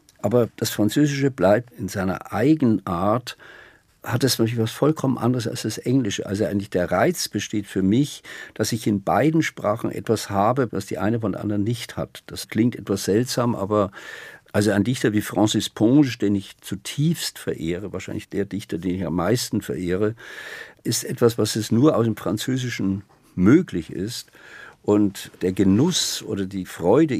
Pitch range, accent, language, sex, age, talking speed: 100-125 Hz, German, German, male, 50-69, 170 wpm